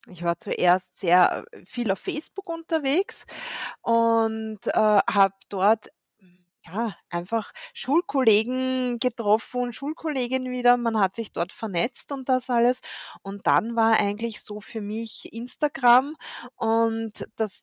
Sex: female